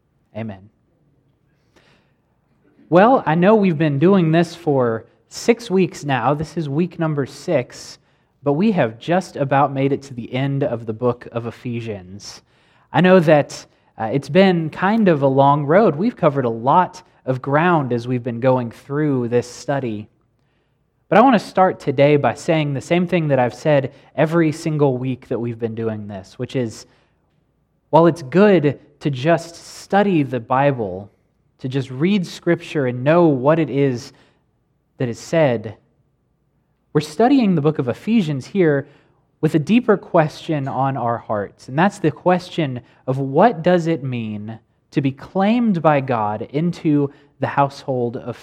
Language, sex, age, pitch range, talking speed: English, male, 20-39, 125-170 Hz, 165 wpm